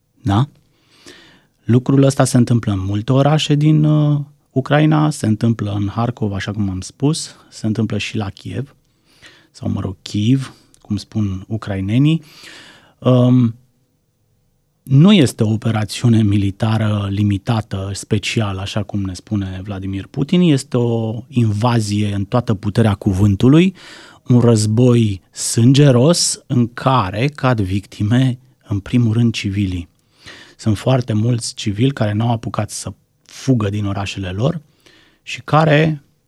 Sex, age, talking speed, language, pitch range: male, 30-49, 125 wpm, Romanian, 105-145 Hz